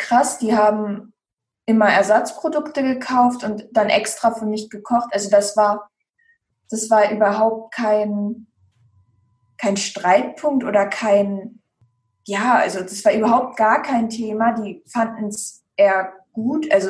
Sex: female